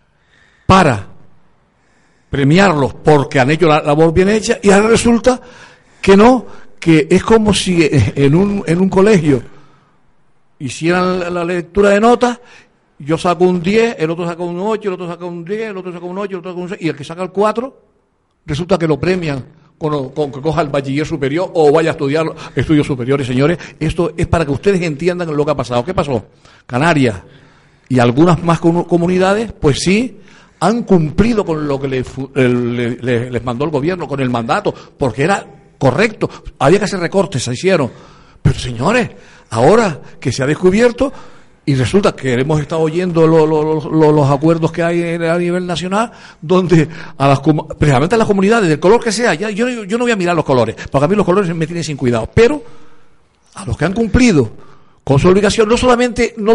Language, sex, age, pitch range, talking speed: Spanish, male, 60-79, 145-195 Hz, 195 wpm